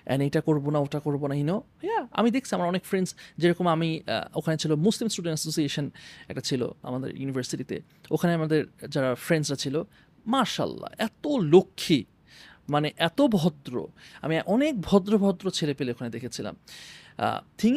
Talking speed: 150 wpm